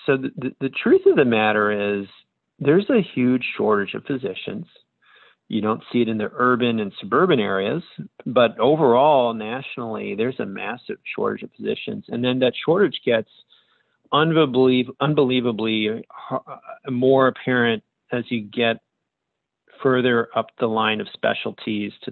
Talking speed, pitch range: 140 wpm, 110-130 Hz